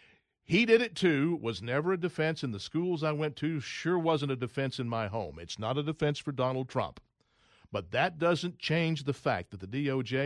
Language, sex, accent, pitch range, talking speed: English, male, American, 110-155 Hz, 215 wpm